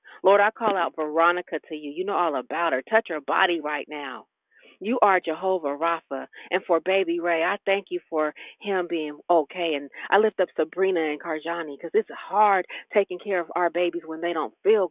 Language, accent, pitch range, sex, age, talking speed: English, American, 155-195 Hz, female, 40-59, 205 wpm